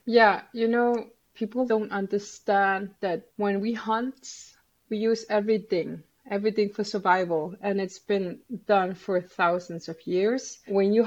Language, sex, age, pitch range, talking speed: English, female, 20-39, 190-225 Hz, 140 wpm